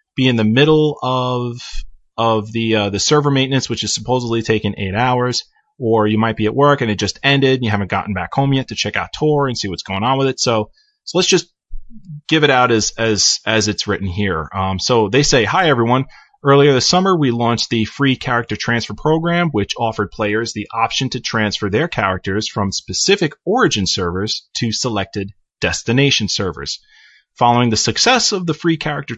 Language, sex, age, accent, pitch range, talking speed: English, male, 30-49, American, 105-140 Hz, 200 wpm